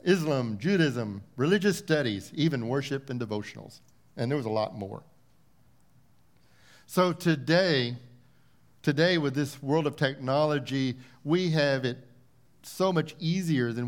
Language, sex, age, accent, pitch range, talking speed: English, male, 50-69, American, 130-175 Hz, 125 wpm